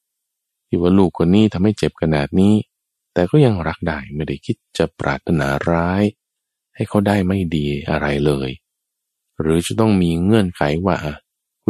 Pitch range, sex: 75-110 Hz, male